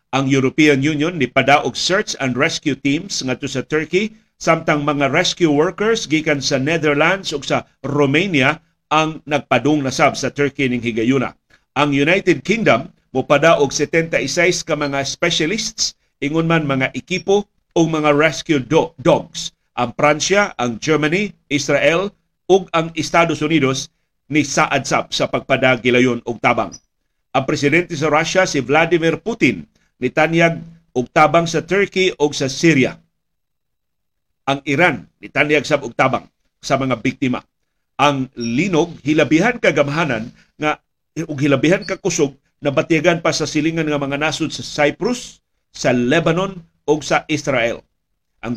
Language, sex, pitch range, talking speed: Filipino, male, 135-165 Hz, 145 wpm